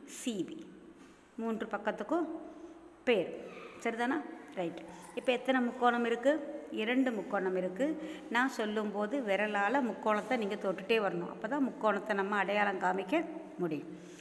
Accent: native